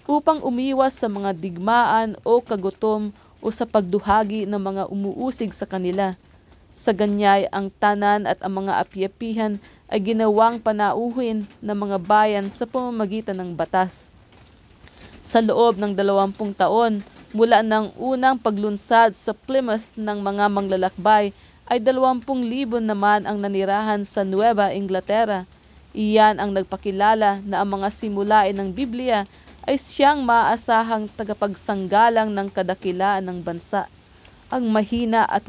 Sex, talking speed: female, 130 wpm